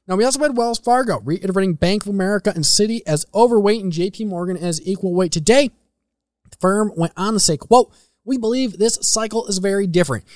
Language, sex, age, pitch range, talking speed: English, male, 20-39, 170-220 Hz, 205 wpm